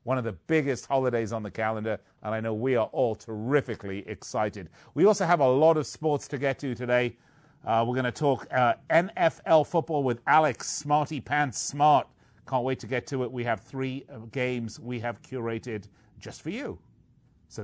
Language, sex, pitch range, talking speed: English, male, 105-140 Hz, 190 wpm